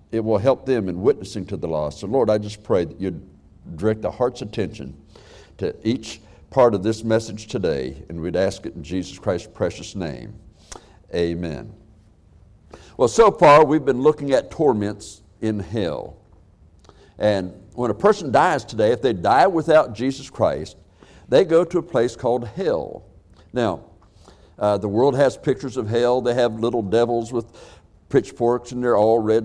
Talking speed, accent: 170 wpm, American